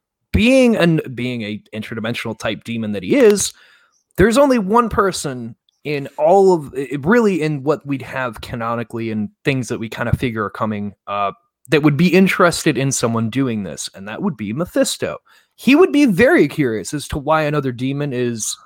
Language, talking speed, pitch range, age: English, 185 wpm, 125-195 Hz, 20-39